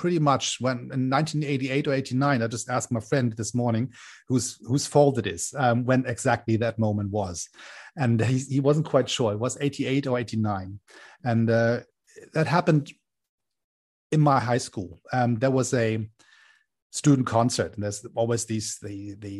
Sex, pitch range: male, 115-130 Hz